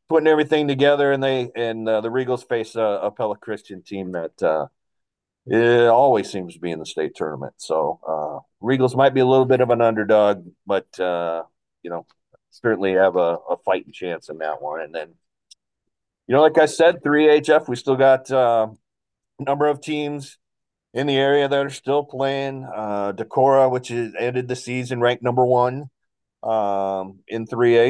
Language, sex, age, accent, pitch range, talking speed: English, male, 40-59, American, 100-125 Hz, 185 wpm